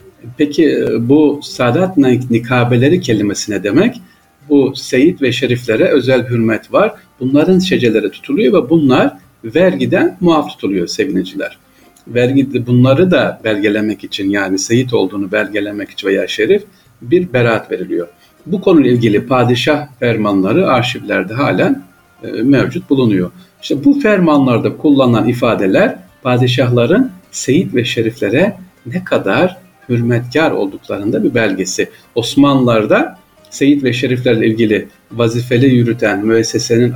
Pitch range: 115-160 Hz